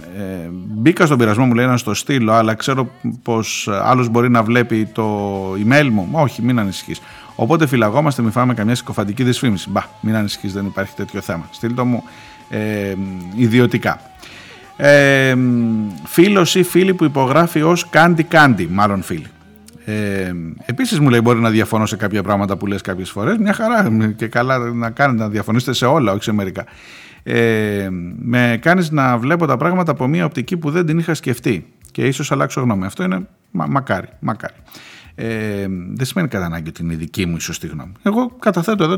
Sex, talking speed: male, 180 wpm